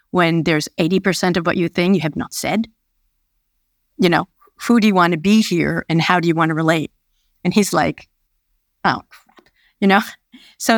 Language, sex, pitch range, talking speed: Danish, female, 175-225 Hz, 195 wpm